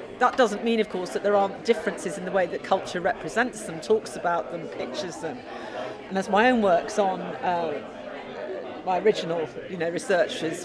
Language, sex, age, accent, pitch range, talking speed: English, female, 40-59, British, 165-210 Hz, 185 wpm